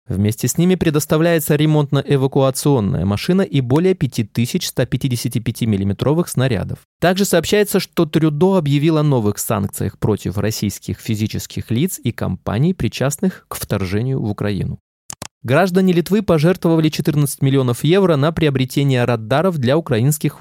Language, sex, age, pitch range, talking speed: Russian, male, 20-39, 110-160 Hz, 120 wpm